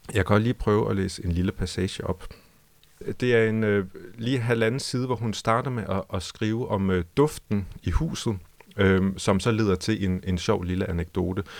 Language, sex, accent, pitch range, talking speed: Danish, male, native, 95-110 Hz, 185 wpm